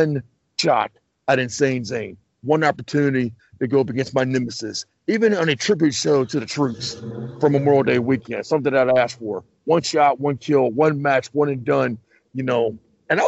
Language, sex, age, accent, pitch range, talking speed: English, male, 40-59, American, 130-190 Hz, 195 wpm